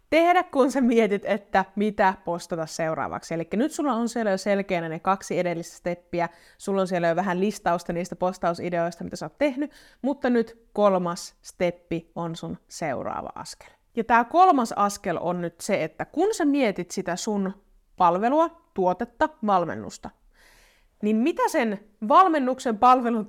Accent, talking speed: native, 150 wpm